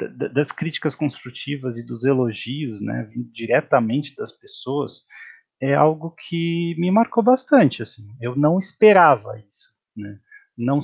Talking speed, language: 125 wpm, Portuguese